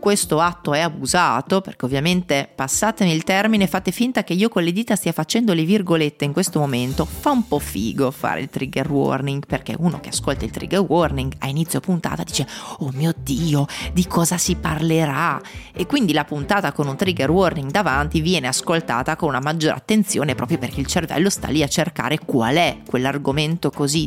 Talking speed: 190 wpm